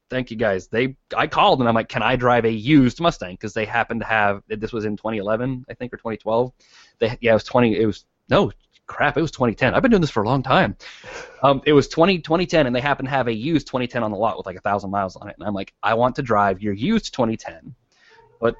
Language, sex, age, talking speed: English, male, 20-39, 260 wpm